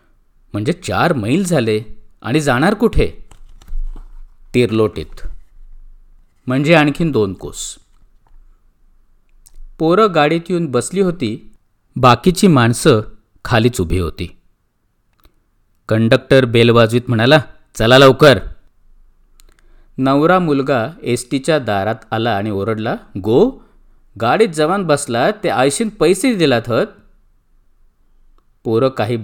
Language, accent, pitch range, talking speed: Marathi, native, 105-150 Hz, 95 wpm